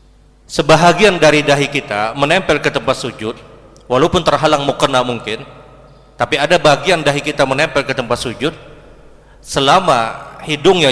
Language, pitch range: Indonesian, 135-170 Hz